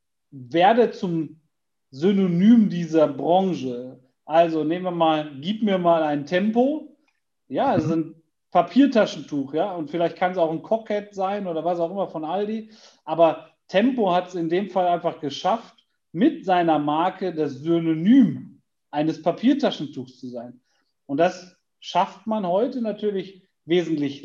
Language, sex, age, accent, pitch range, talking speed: German, male, 40-59, German, 145-180 Hz, 145 wpm